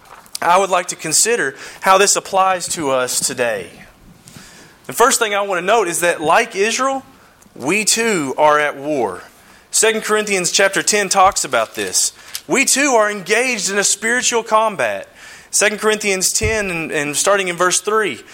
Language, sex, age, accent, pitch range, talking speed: English, male, 30-49, American, 175-220 Hz, 165 wpm